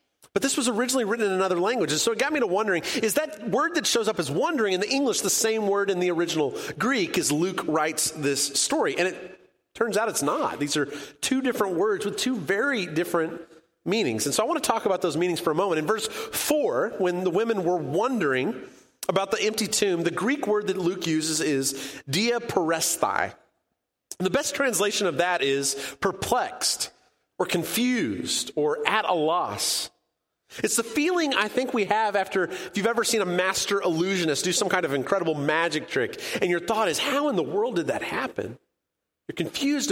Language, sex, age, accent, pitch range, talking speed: English, male, 30-49, American, 165-240 Hz, 205 wpm